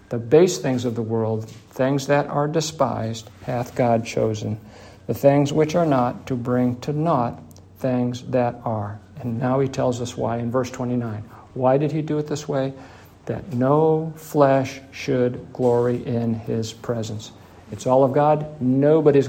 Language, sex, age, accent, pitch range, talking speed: English, male, 50-69, American, 120-145 Hz, 170 wpm